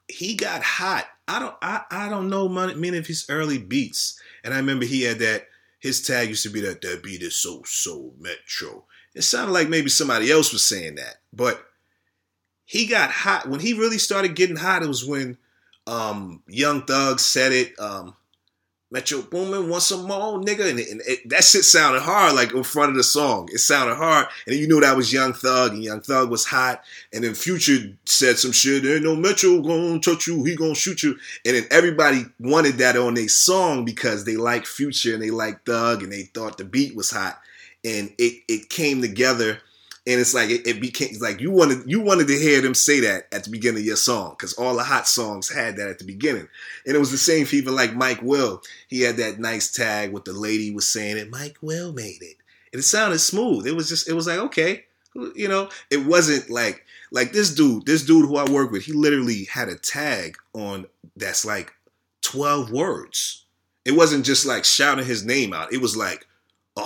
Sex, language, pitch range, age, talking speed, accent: male, English, 115-165 Hz, 30-49, 220 wpm, American